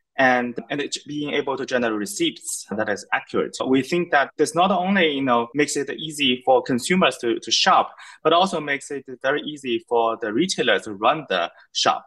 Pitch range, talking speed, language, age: 110-165 Hz, 205 wpm, English, 20-39